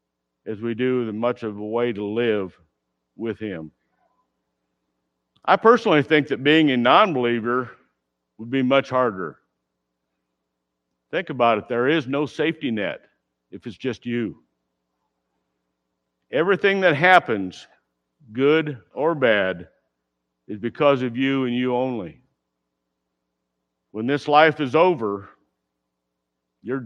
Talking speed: 125 wpm